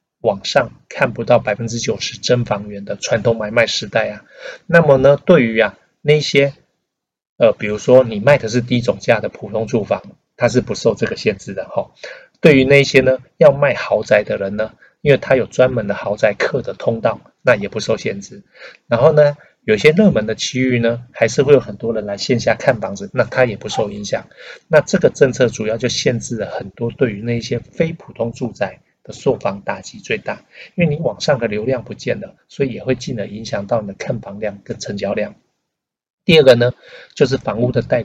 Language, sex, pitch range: Chinese, male, 110-145 Hz